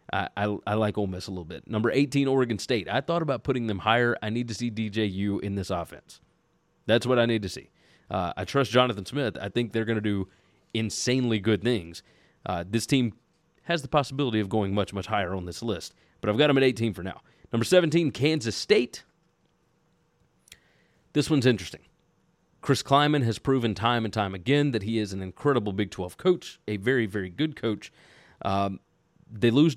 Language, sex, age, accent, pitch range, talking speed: English, male, 30-49, American, 100-130 Hz, 200 wpm